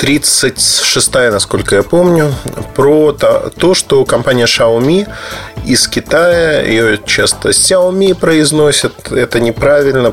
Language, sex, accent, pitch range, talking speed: Russian, male, native, 110-150 Hz, 105 wpm